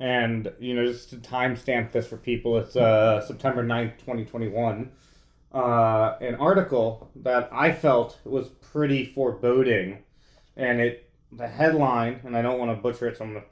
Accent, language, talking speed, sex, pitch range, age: American, English, 175 wpm, male, 120-145 Hz, 30-49